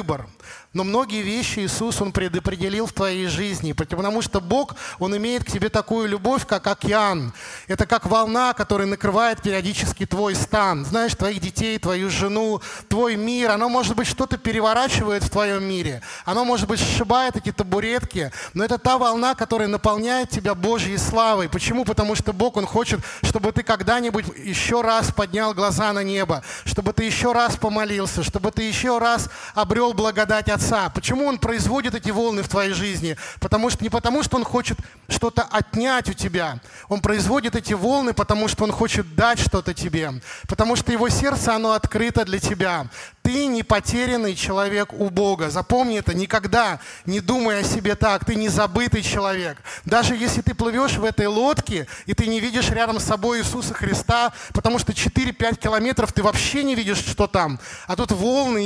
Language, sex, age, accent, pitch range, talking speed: Russian, male, 20-39, native, 195-230 Hz, 175 wpm